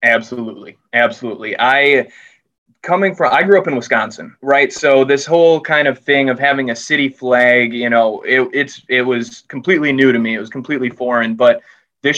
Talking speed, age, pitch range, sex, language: 185 wpm, 20-39, 115-135 Hz, male, English